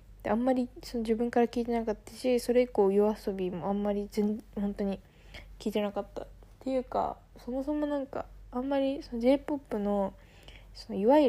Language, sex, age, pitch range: Japanese, female, 20-39, 185-230 Hz